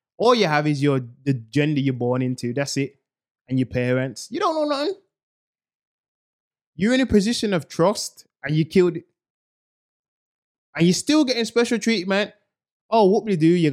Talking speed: 180 wpm